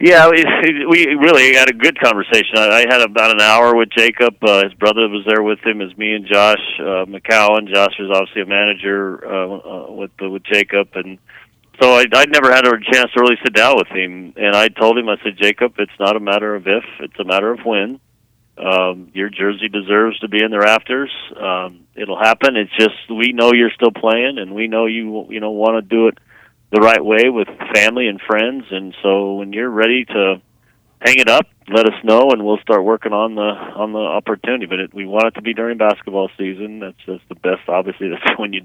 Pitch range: 100-115 Hz